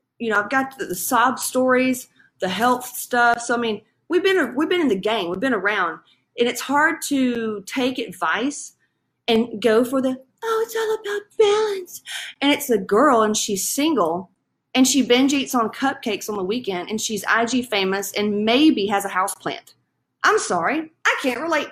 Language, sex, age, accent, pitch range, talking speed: English, female, 30-49, American, 215-280 Hz, 190 wpm